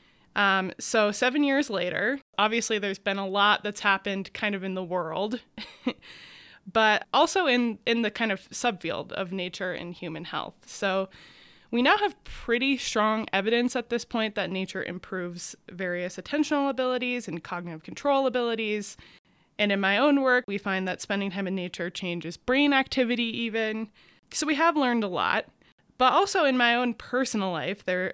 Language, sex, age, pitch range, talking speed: English, female, 20-39, 190-240 Hz, 170 wpm